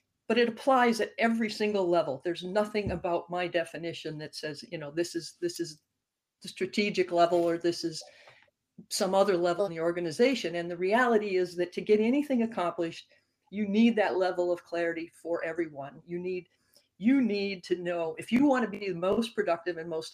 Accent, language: American, English